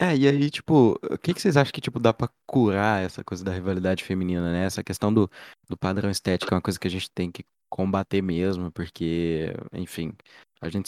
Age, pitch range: 20-39, 90-105 Hz